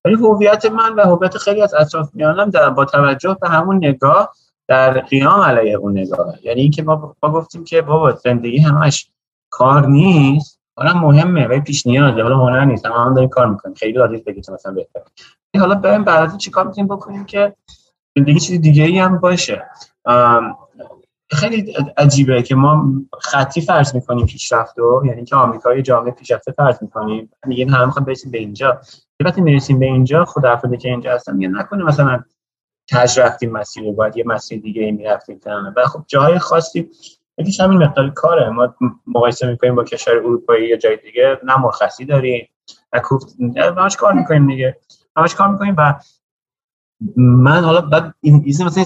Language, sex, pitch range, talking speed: Persian, male, 125-165 Hz, 170 wpm